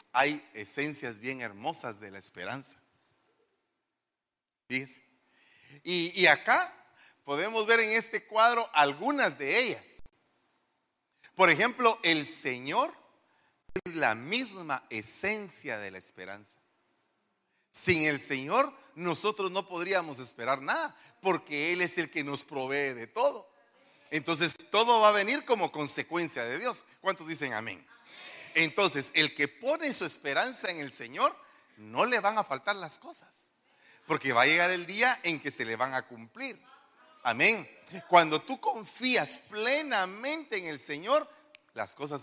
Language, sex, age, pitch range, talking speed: Spanish, male, 40-59, 140-220 Hz, 140 wpm